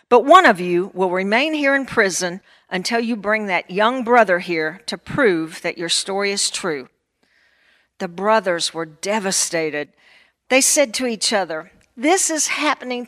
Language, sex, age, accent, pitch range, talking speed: English, female, 50-69, American, 185-250 Hz, 160 wpm